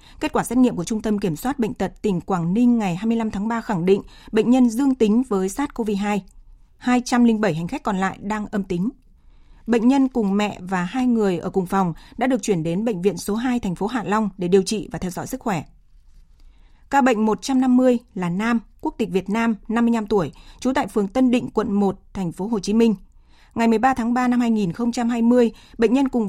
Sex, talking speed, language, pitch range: female, 220 wpm, Vietnamese, 195-240 Hz